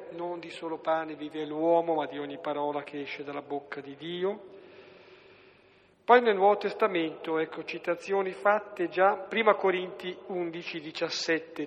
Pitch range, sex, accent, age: 150-185 Hz, male, native, 50-69